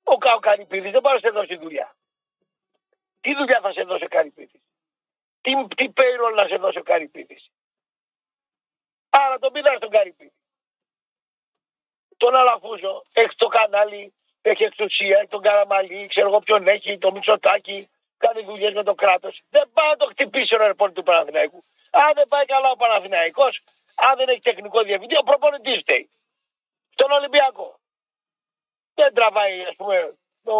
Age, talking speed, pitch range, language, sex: 50-69, 140 wpm, 210-275 Hz, Greek, male